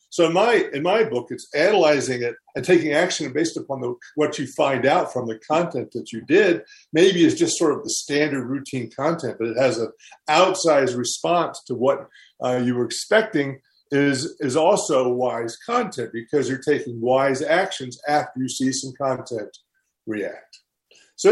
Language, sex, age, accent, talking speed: English, male, 50-69, American, 175 wpm